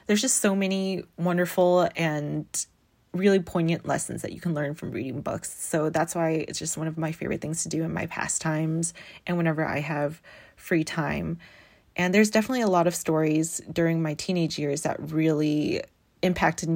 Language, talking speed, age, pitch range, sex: English, 185 wpm, 20-39, 160-185 Hz, female